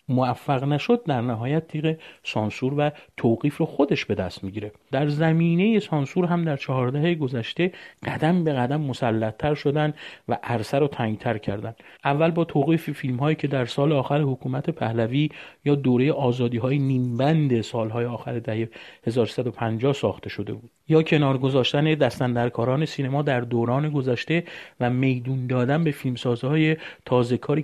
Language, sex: Persian, male